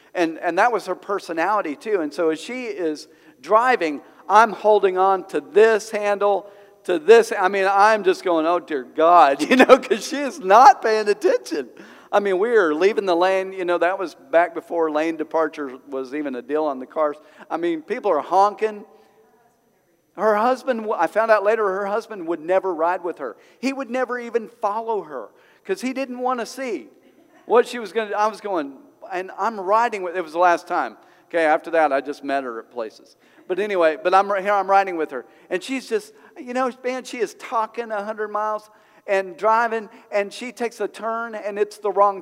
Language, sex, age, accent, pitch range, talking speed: English, male, 50-69, American, 180-230 Hz, 210 wpm